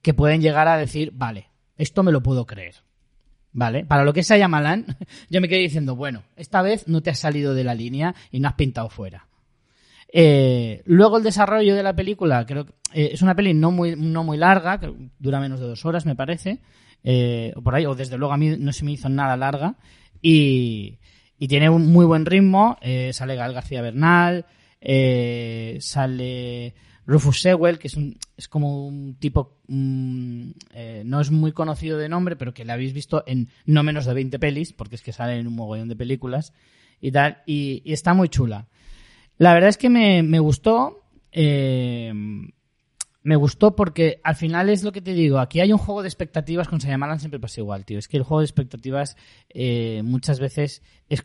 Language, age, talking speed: Spanish, 20-39, 205 wpm